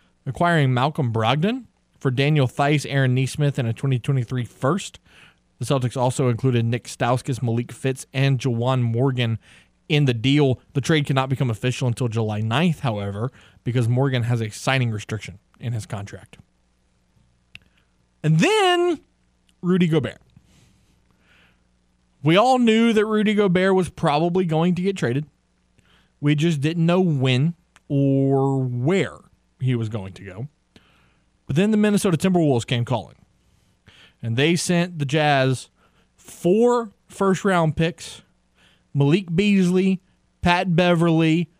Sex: male